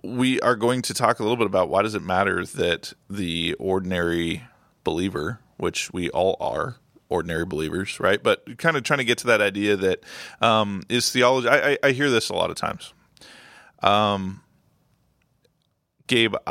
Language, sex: English, male